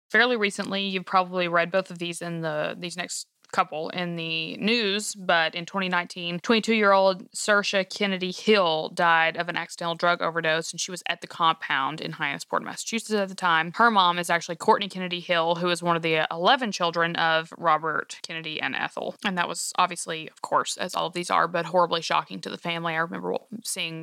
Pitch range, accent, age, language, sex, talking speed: 170-205 Hz, American, 20-39, English, female, 200 wpm